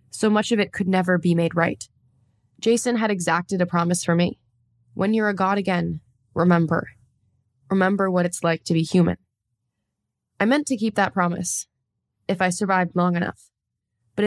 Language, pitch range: English, 170-215 Hz